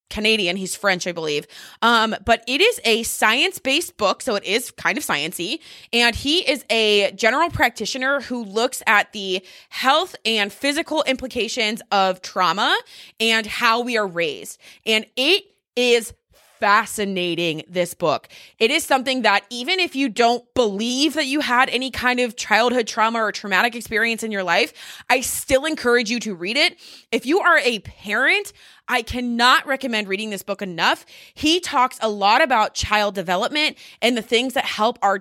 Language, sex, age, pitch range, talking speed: English, female, 20-39, 210-270 Hz, 170 wpm